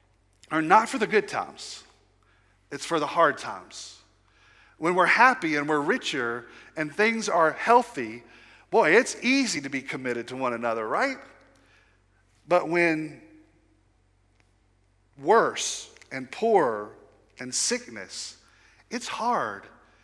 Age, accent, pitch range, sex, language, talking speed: 40-59, American, 135-200 Hz, male, English, 120 wpm